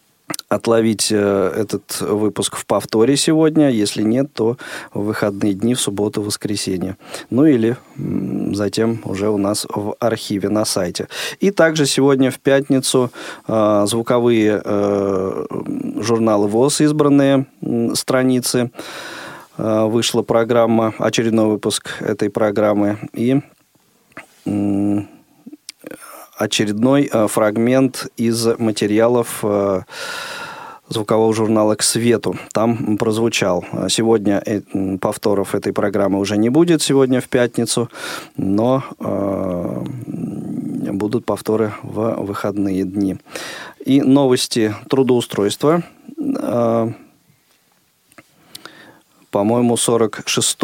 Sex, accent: male, native